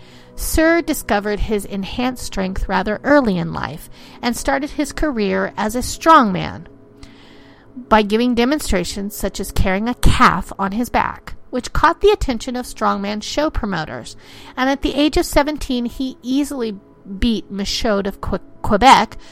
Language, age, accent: English, 40-59, American